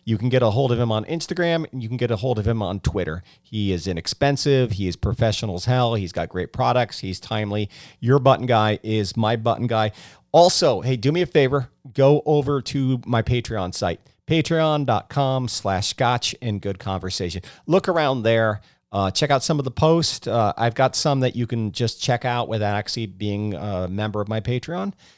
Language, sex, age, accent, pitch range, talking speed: English, male, 40-59, American, 105-135 Hz, 205 wpm